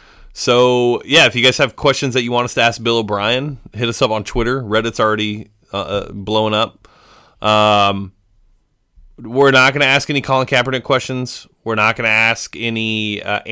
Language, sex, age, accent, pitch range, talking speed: English, male, 20-39, American, 105-125 Hz, 185 wpm